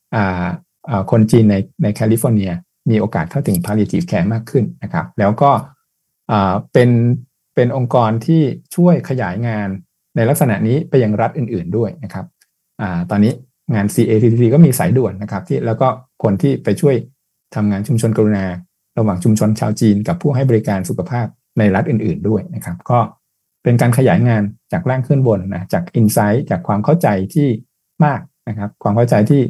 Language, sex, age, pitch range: Thai, male, 60-79, 105-135 Hz